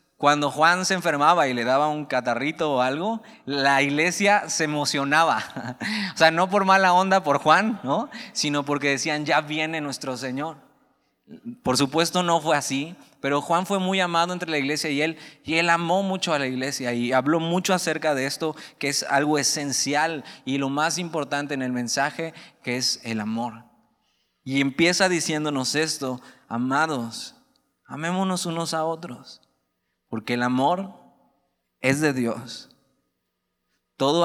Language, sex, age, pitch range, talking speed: Spanish, male, 20-39, 135-170 Hz, 160 wpm